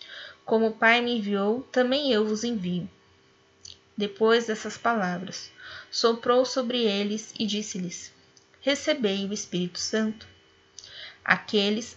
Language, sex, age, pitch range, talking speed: Portuguese, female, 10-29, 185-235 Hz, 110 wpm